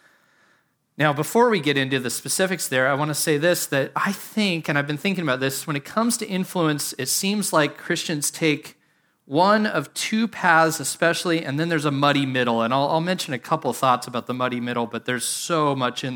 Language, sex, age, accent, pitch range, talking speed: English, male, 30-49, American, 130-185 Hz, 225 wpm